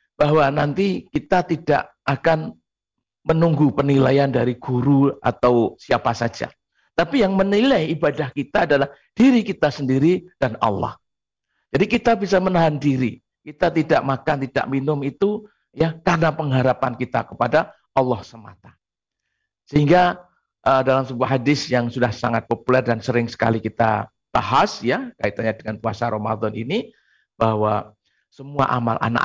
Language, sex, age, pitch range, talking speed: Indonesian, male, 50-69, 120-160 Hz, 135 wpm